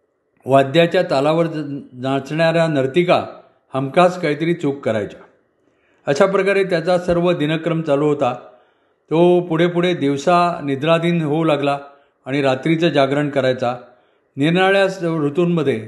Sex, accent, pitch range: male, native, 140-175 Hz